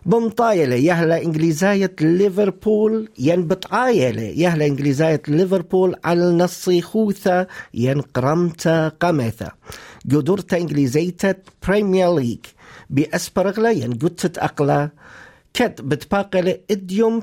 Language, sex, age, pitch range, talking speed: English, male, 50-69, 145-195 Hz, 75 wpm